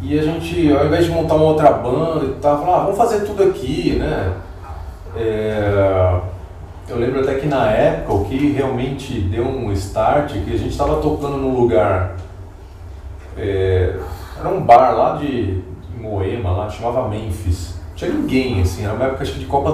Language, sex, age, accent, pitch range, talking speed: Portuguese, male, 30-49, Brazilian, 90-145 Hz, 175 wpm